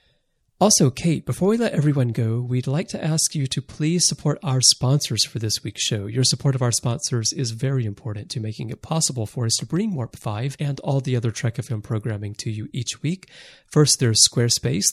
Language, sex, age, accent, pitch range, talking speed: English, male, 30-49, American, 115-150 Hz, 210 wpm